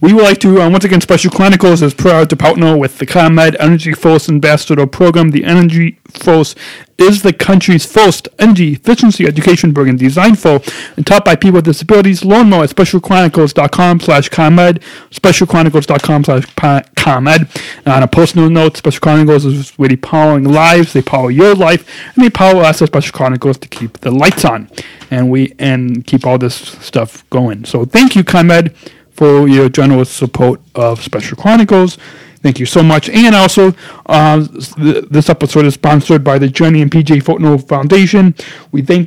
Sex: male